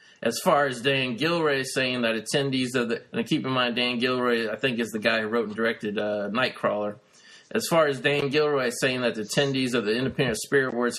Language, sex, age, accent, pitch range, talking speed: English, male, 20-39, American, 115-135 Hz, 225 wpm